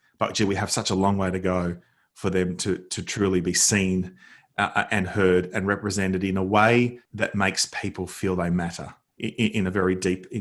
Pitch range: 95-110 Hz